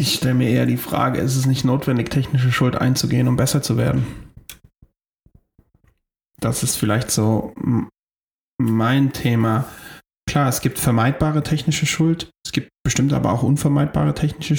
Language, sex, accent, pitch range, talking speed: German, male, German, 125-145 Hz, 150 wpm